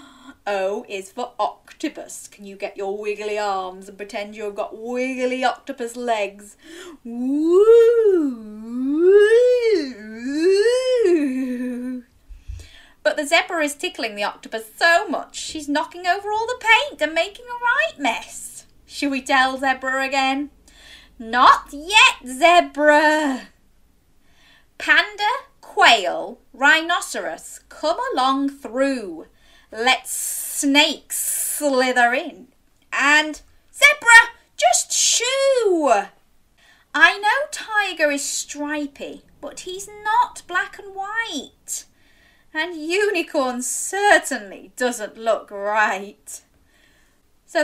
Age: 30-49